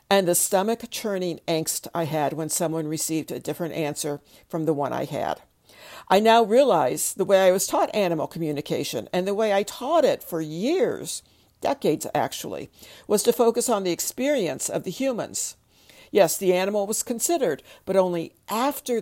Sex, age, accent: female, 60-79, American